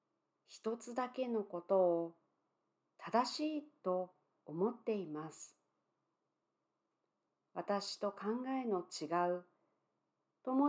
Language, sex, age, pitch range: Japanese, female, 40-59, 180-260 Hz